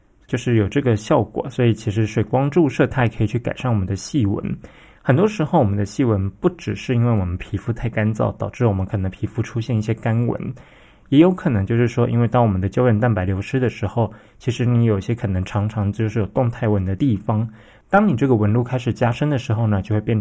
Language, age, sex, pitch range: Chinese, 20-39, male, 105-125 Hz